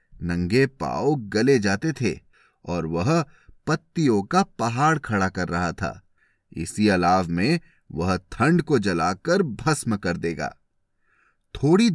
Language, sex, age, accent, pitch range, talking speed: Hindi, male, 30-49, native, 95-155 Hz, 125 wpm